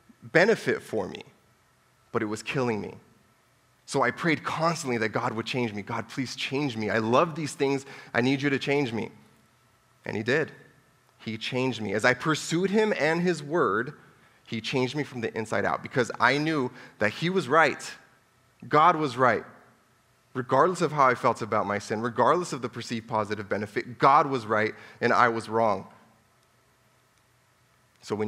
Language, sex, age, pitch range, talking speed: English, male, 30-49, 110-130 Hz, 180 wpm